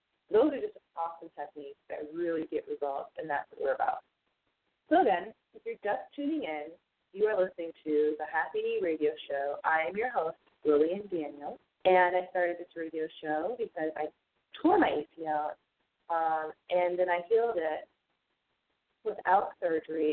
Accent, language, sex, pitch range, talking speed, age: American, English, female, 160-240 Hz, 165 wpm, 30-49